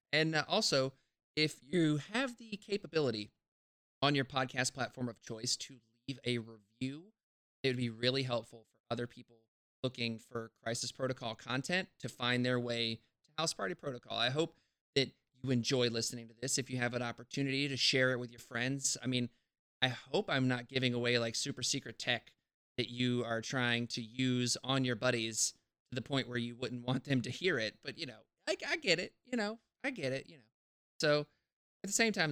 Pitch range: 115-135 Hz